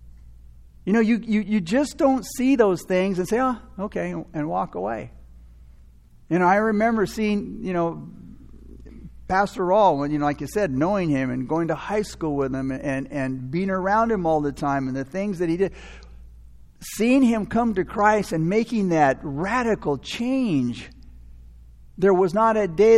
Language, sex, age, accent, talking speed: English, male, 60-79, American, 180 wpm